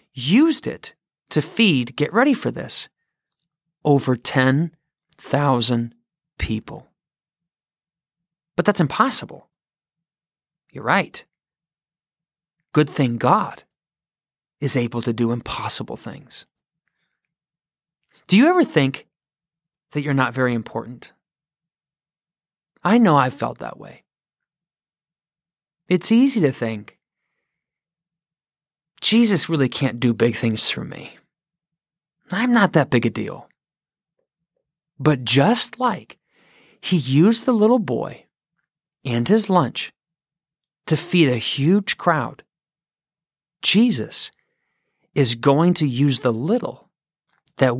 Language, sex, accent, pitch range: English, male, American, 140-175 Hz